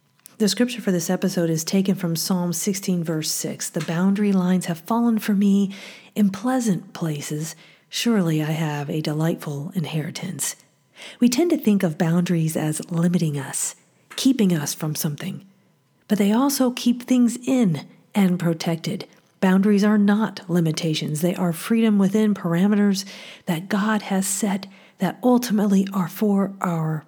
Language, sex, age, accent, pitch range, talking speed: English, female, 40-59, American, 170-210 Hz, 150 wpm